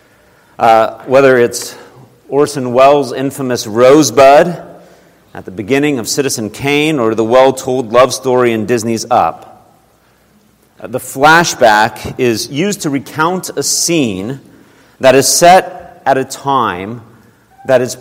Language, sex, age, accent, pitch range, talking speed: English, male, 40-59, American, 115-145 Hz, 125 wpm